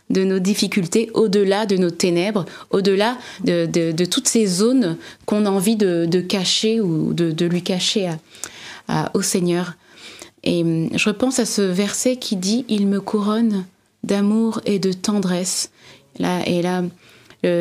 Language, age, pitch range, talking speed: French, 20-39, 185-225 Hz, 170 wpm